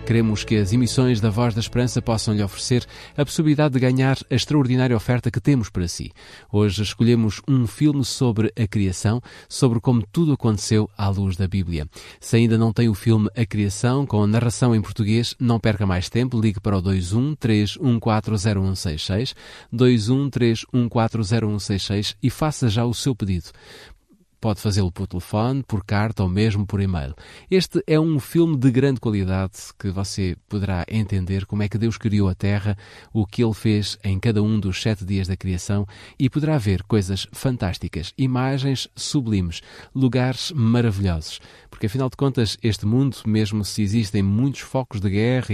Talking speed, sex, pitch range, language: 165 wpm, male, 100-120 Hz, Portuguese